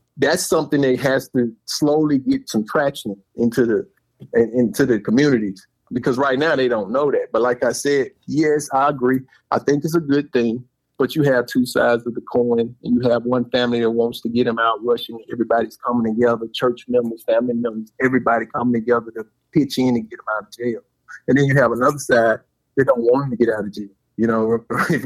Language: English